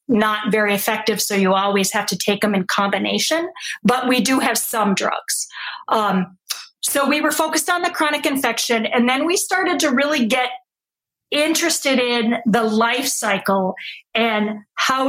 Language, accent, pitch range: English, American, 210-260 Hz